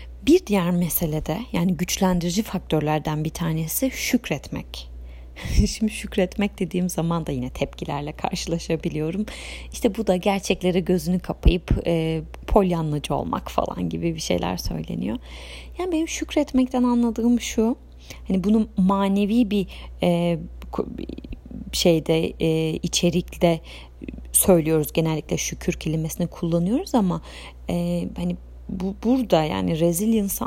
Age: 30-49